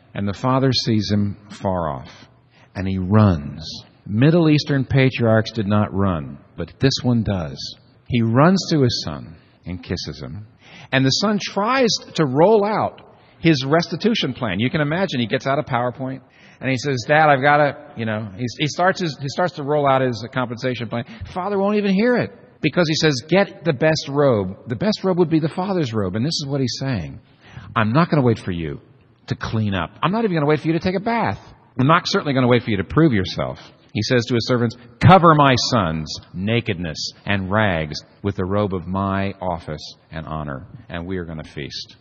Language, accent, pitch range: English, American, 100-150 Hz